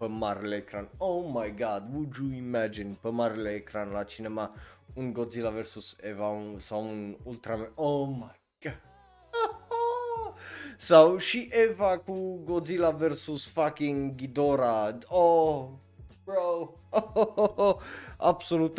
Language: Romanian